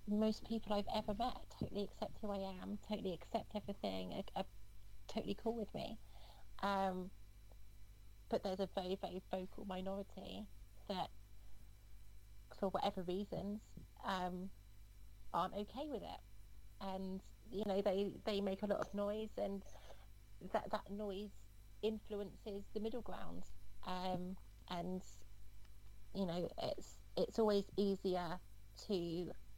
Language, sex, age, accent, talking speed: English, female, 30-49, British, 130 wpm